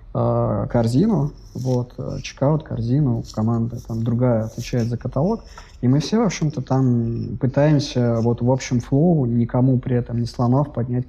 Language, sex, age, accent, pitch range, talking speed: Russian, male, 20-39, native, 115-130 Hz, 145 wpm